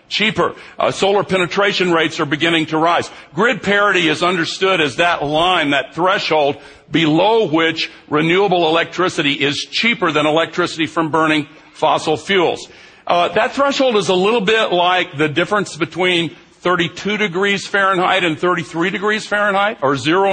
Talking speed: 150 wpm